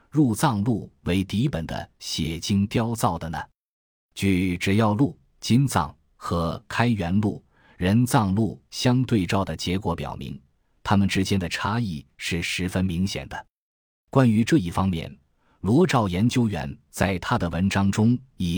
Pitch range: 85-110 Hz